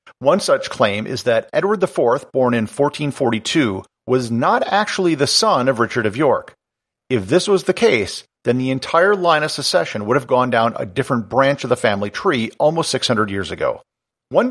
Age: 50-69